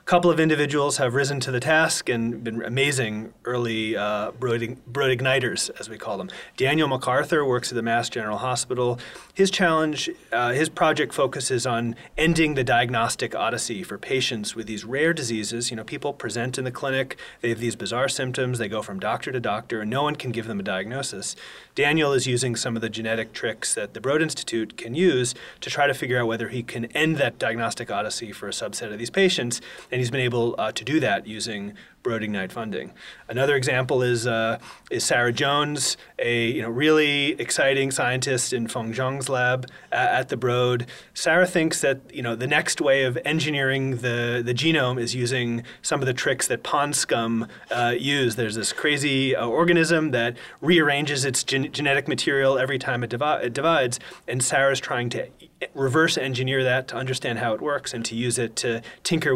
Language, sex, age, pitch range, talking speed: English, male, 30-49, 115-140 Hz, 195 wpm